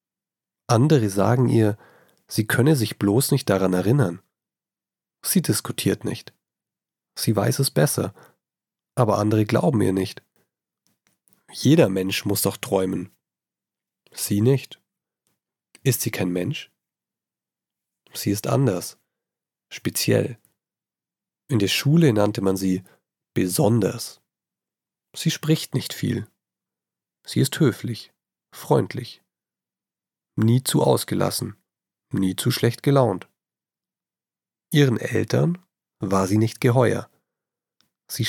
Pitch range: 95-135 Hz